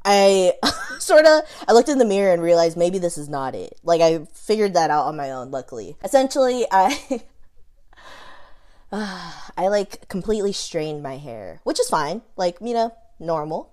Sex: female